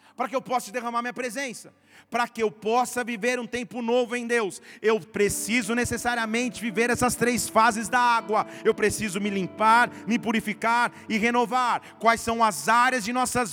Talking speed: 175 wpm